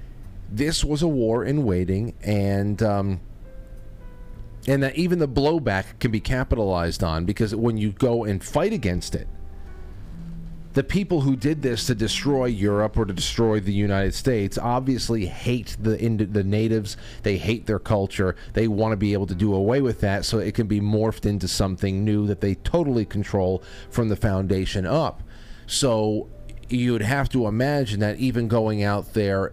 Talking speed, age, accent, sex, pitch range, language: 170 wpm, 30-49, American, male, 95-115 Hz, English